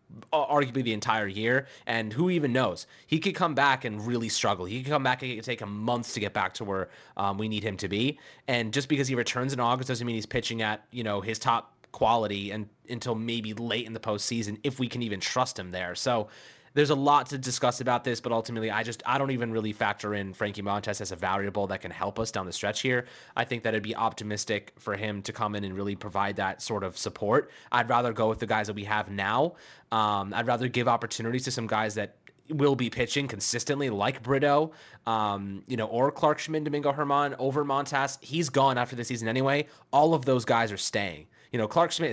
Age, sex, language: 20-39, male, English